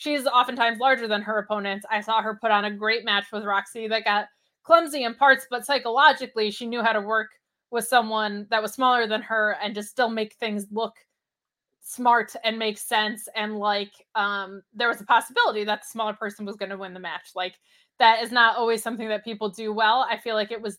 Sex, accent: female, American